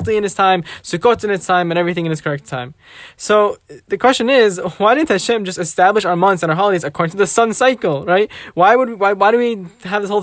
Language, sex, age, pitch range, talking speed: English, male, 10-29, 180-230 Hz, 245 wpm